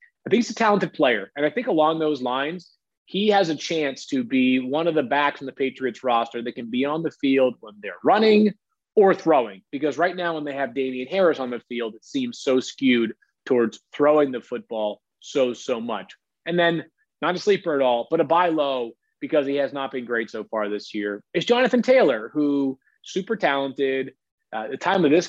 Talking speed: 210 wpm